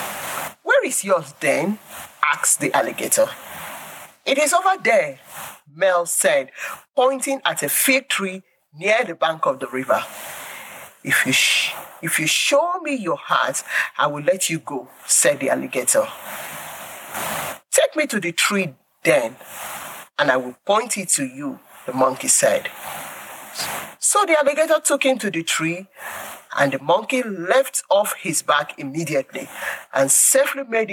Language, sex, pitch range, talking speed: English, male, 170-280 Hz, 140 wpm